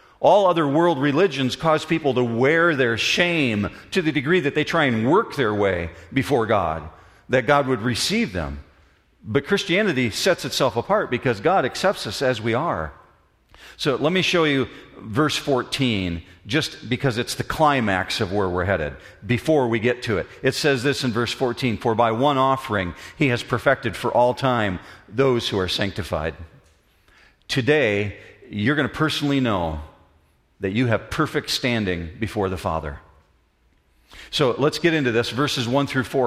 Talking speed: 170 wpm